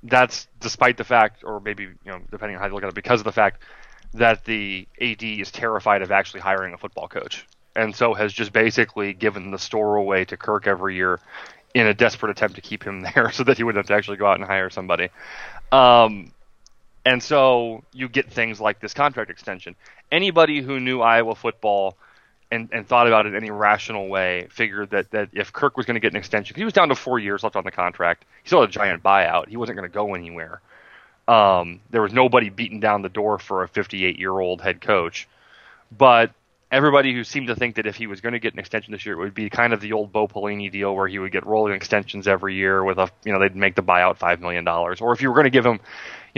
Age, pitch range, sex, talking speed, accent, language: 30-49, 95-120 Hz, male, 245 wpm, American, English